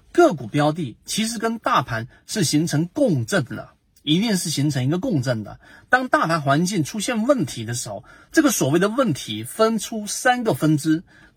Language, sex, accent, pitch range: Chinese, male, native, 130-210 Hz